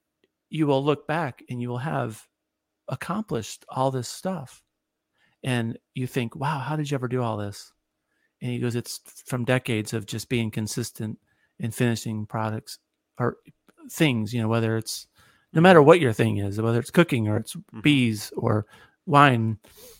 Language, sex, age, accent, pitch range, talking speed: English, male, 40-59, American, 110-125 Hz, 170 wpm